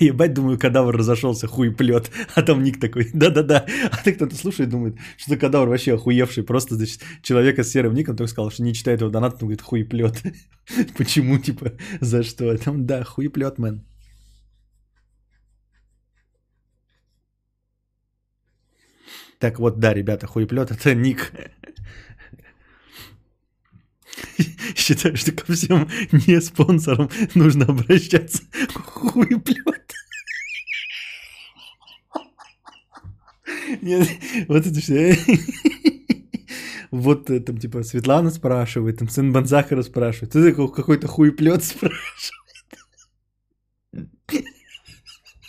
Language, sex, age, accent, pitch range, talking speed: Russian, male, 20-39, native, 115-180 Hz, 115 wpm